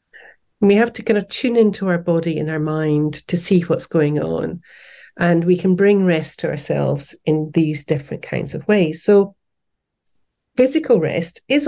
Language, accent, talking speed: English, British, 175 wpm